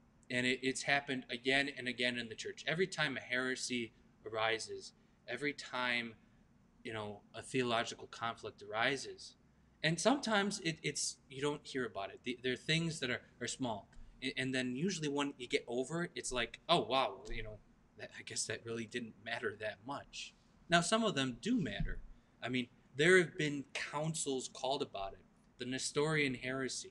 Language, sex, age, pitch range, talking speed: English, male, 20-39, 120-150 Hz, 185 wpm